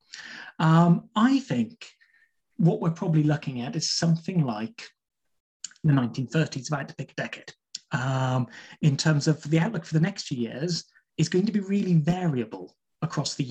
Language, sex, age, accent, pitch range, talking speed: English, male, 30-49, British, 140-170 Hz, 165 wpm